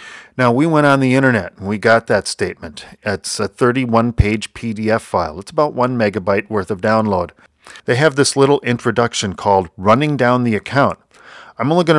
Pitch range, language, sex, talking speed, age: 105-135 Hz, English, male, 185 wpm, 40-59